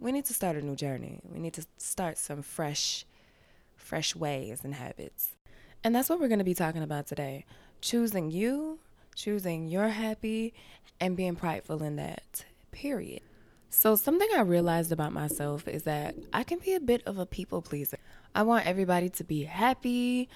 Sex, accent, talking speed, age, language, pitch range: female, American, 180 wpm, 20-39, English, 155-220 Hz